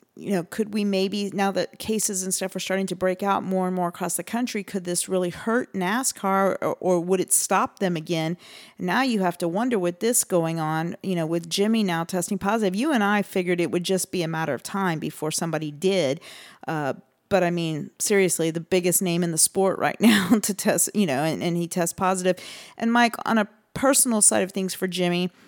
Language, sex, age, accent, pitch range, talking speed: English, female, 40-59, American, 175-205 Hz, 225 wpm